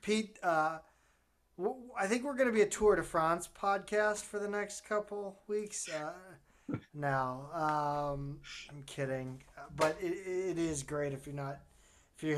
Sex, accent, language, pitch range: male, American, English, 150-195 Hz